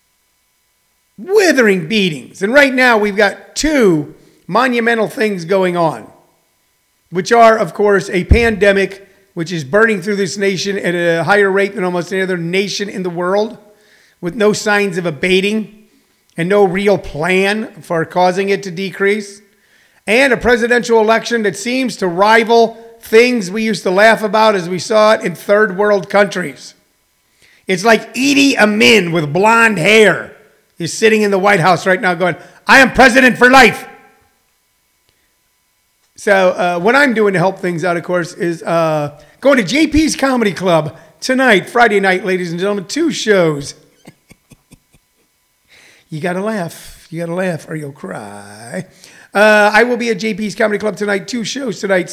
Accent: American